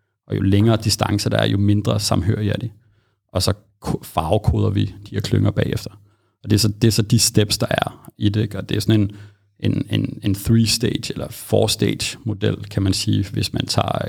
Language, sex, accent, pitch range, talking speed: Danish, male, native, 100-115 Hz, 215 wpm